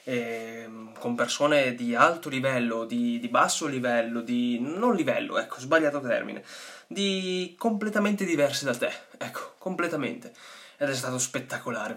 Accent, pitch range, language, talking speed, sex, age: native, 130-190 Hz, Italian, 135 wpm, male, 20-39